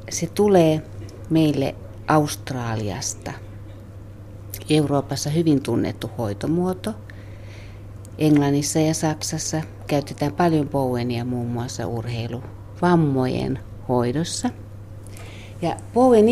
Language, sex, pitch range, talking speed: Finnish, female, 100-155 Hz, 75 wpm